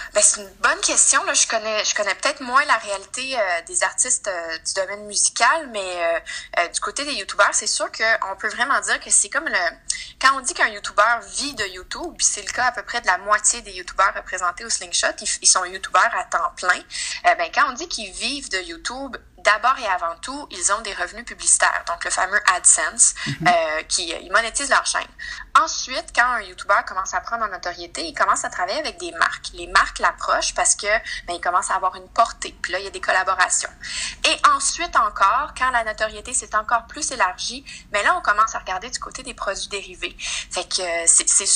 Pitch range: 195-275 Hz